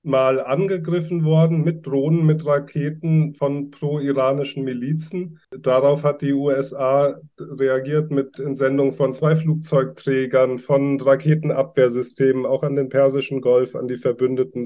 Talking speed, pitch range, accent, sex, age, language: 125 wpm, 120-145 Hz, German, male, 30-49, German